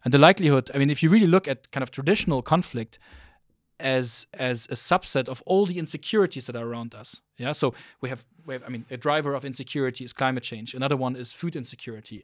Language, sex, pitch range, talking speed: Bulgarian, male, 125-150 Hz, 225 wpm